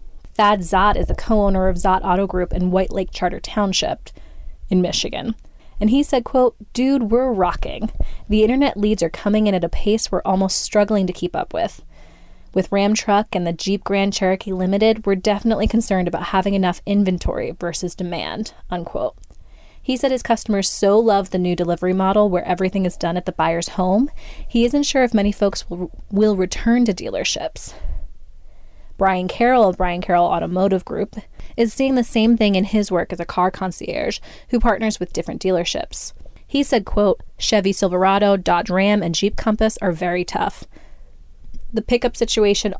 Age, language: 20-39, English